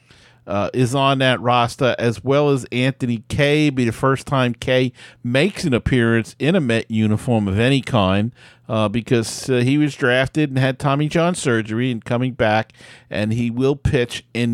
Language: English